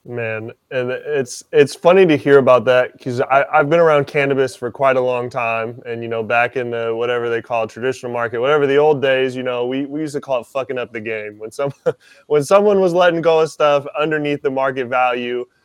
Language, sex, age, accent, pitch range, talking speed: English, male, 20-39, American, 120-145 Hz, 235 wpm